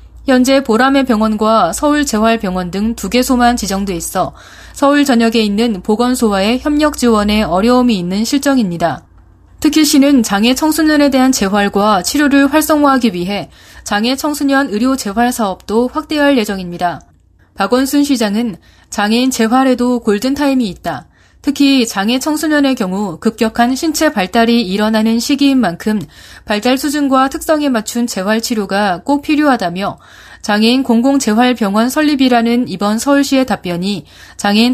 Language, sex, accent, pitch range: Korean, female, native, 200-260 Hz